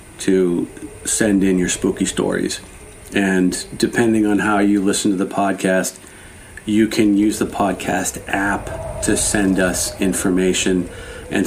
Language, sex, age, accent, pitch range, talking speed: English, male, 40-59, American, 95-105 Hz, 135 wpm